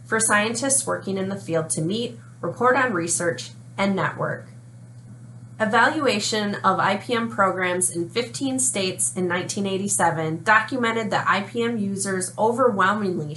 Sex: female